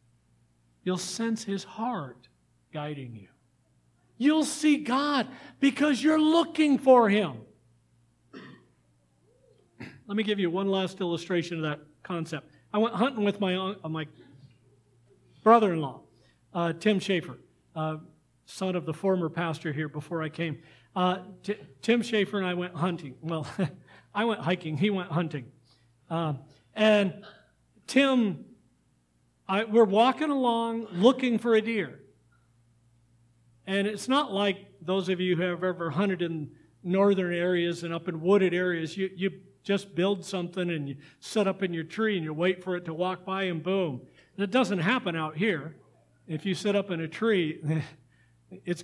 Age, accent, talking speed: 50-69, American, 150 wpm